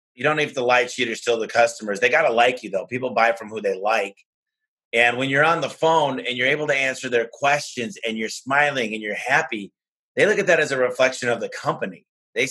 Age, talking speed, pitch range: 30-49, 250 wpm, 115-150 Hz